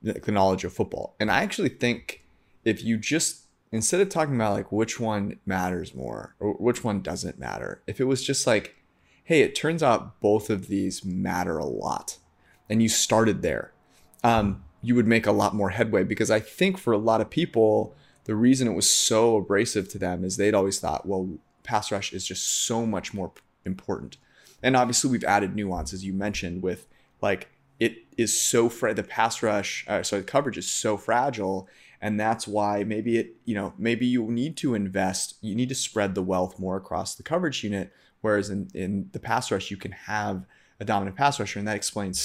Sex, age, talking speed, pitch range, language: male, 30-49, 205 wpm, 95-115 Hz, English